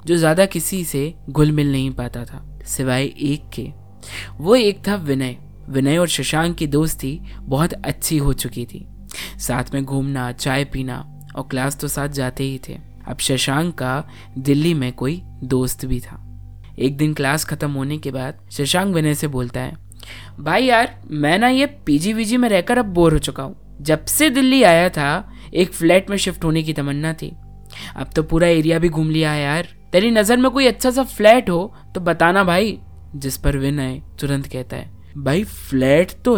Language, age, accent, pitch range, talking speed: Hindi, 20-39, native, 135-180 Hz, 190 wpm